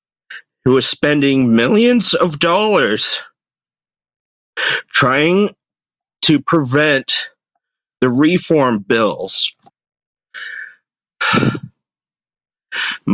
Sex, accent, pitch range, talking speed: male, American, 130-185 Hz, 55 wpm